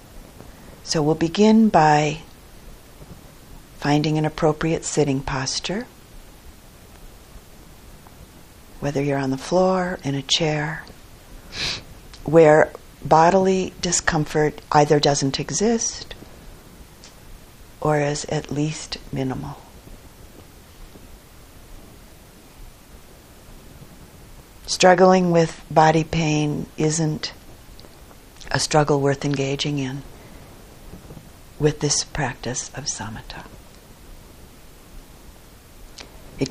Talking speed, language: 70 wpm, English